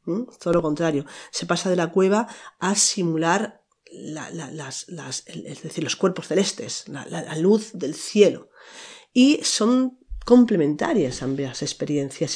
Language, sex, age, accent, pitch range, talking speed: Spanish, female, 40-59, Spanish, 145-175 Hz, 155 wpm